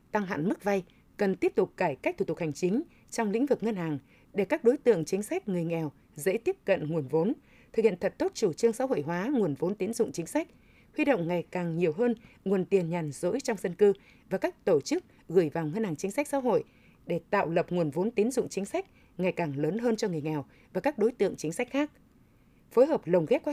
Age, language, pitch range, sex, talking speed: 20-39, Vietnamese, 175-240 Hz, female, 250 wpm